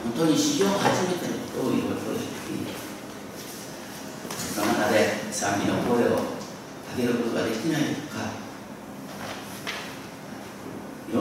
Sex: male